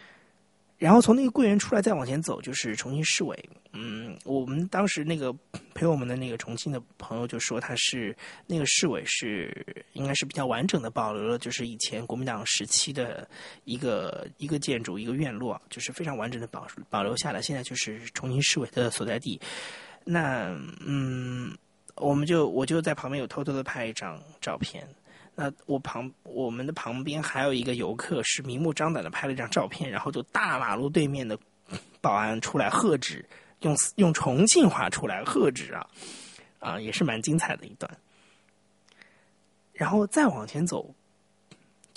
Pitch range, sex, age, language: 125-170 Hz, male, 30-49, Chinese